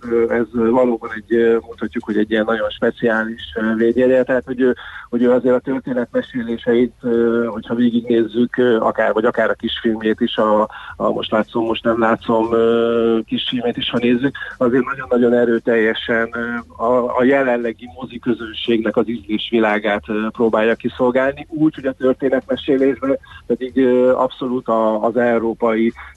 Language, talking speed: Hungarian, 130 wpm